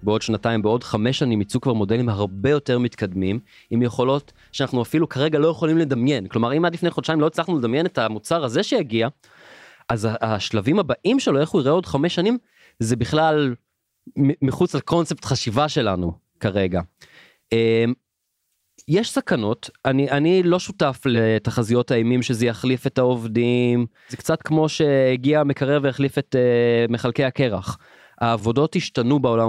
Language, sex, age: Hebrew, male, 20-39